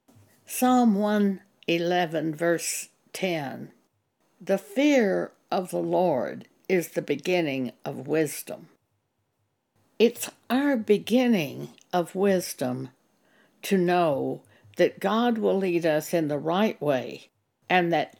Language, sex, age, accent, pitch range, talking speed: English, female, 60-79, American, 145-195 Hz, 105 wpm